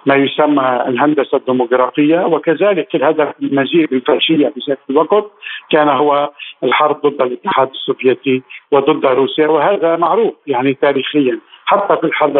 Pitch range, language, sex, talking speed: 145-195 Hz, Arabic, male, 130 wpm